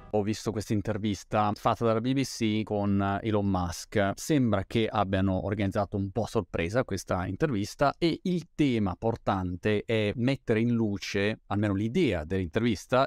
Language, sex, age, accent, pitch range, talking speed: Italian, male, 30-49, native, 105-125 Hz, 140 wpm